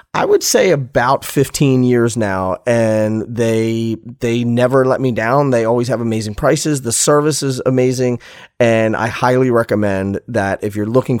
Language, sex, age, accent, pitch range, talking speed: English, male, 30-49, American, 110-140 Hz, 165 wpm